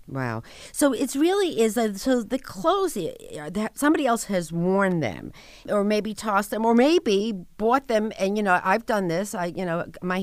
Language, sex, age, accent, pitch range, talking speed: English, female, 50-69, American, 180-230 Hz, 195 wpm